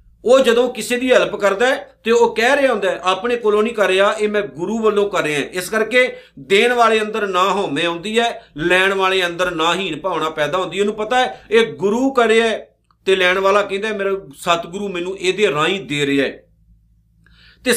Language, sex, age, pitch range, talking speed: Punjabi, male, 50-69, 180-230 Hz, 190 wpm